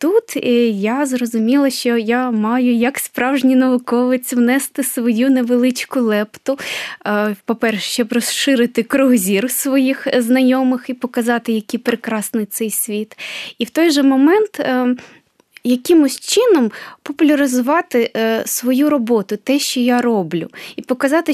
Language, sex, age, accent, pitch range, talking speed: Ukrainian, female, 20-39, native, 220-265 Hz, 120 wpm